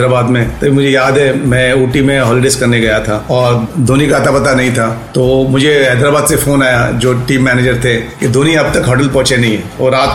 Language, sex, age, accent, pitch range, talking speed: Hindi, male, 40-59, native, 125-145 Hz, 235 wpm